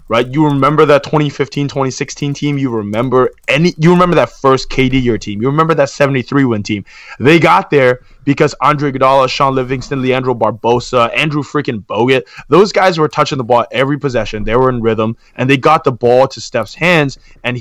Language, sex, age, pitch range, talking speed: English, male, 20-39, 120-145 Hz, 185 wpm